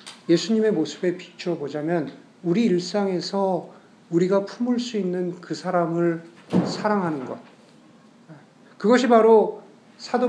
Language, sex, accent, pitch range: Korean, male, native, 165-215 Hz